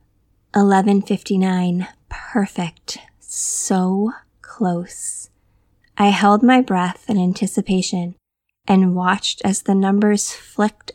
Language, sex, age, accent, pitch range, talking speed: English, female, 20-39, American, 185-215 Hz, 80 wpm